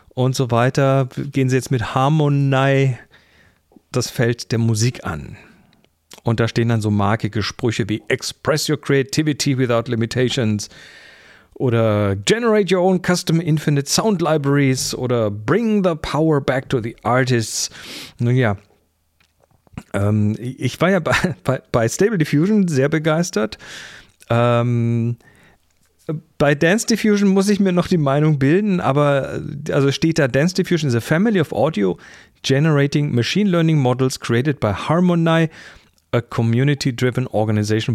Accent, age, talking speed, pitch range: German, 40-59, 140 wpm, 115-160 Hz